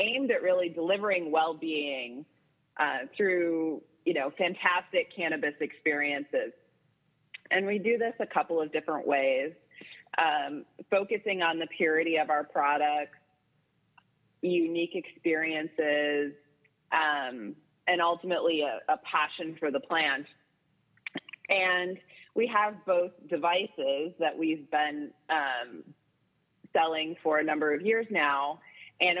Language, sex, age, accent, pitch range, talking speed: English, female, 30-49, American, 155-190 Hz, 115 wpm